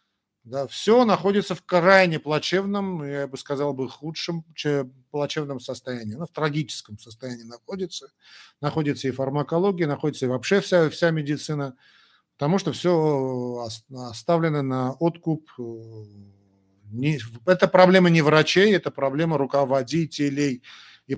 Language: Russian